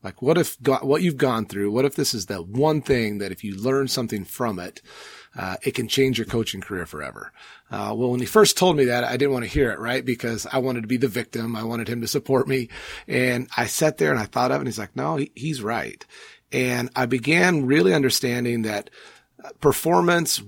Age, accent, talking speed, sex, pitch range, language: 30-49, American, 235 wpm, male, 110-140 Hz, English